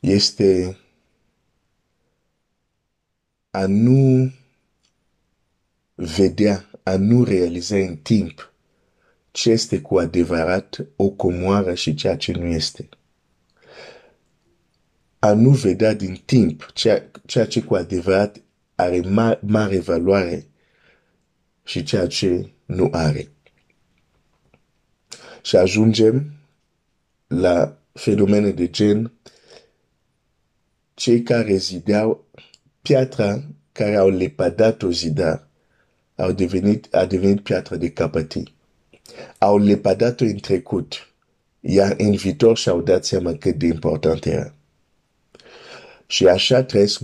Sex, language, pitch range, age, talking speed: male, Romanian, 90-110 Hz, 50-69, 85 wpm